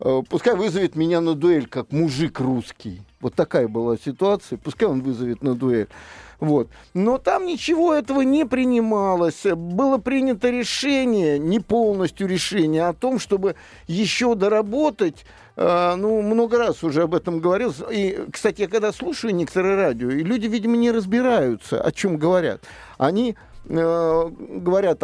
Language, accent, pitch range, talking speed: Russian, native, 155-225 Hz, 145 wpm